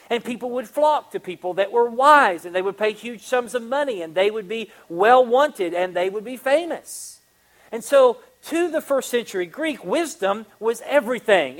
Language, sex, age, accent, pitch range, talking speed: English, male, 40-59, American, 210-275 Hz, 190 wpm